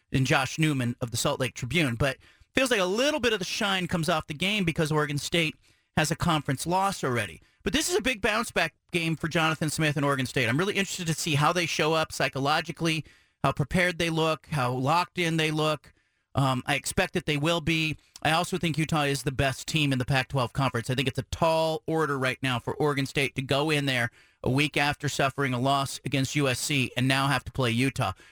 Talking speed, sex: 230 wpm, male